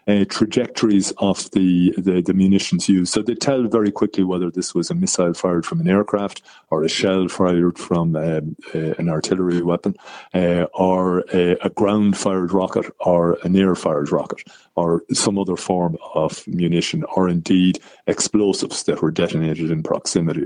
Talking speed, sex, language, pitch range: 170 wpm, male, English, 85-105 Hz